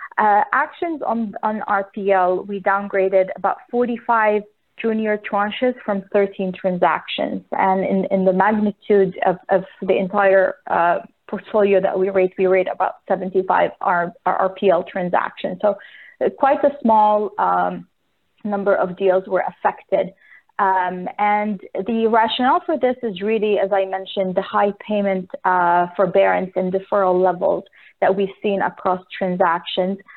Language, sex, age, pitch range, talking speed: English, female, 30-49, 190-220 Hz, 135 wpm